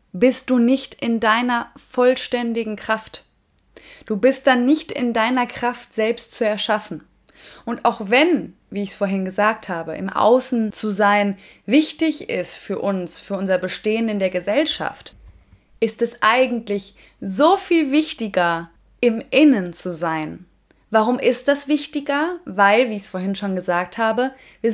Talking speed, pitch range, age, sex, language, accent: 155 wpm, 190-245 Hz, 20-39, female, German, German